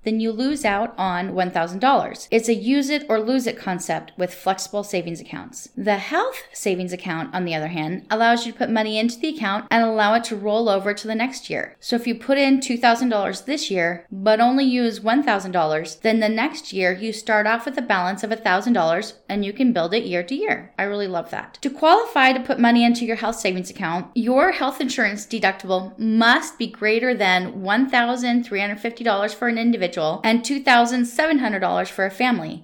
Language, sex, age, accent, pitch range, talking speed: English, female, 10-29, American, 200-260 Hz, 195 wpm